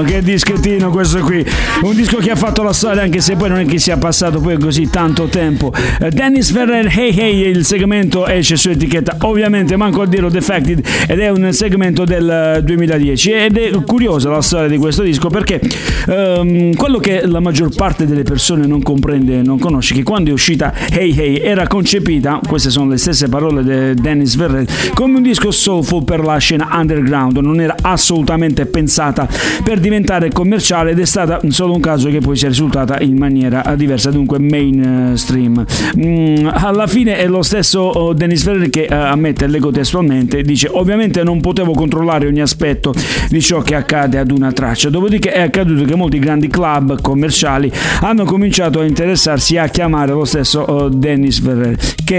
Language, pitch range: Italian, 145-185 Hz